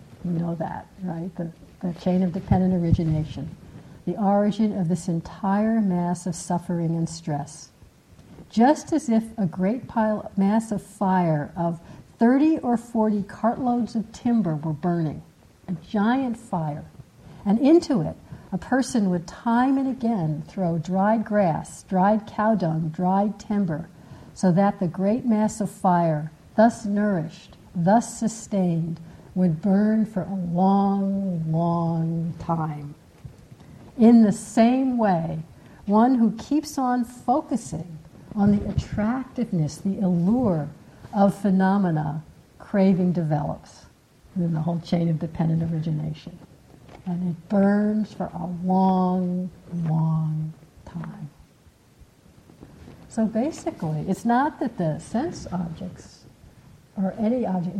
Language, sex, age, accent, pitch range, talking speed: English, female, 60-79, American, 170-215 Hz, 125 wpm